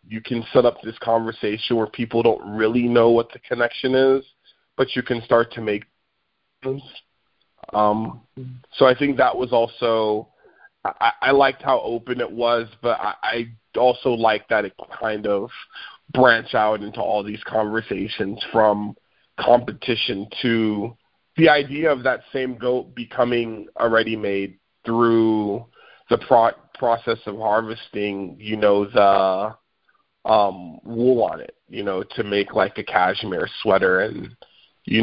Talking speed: 150 wpm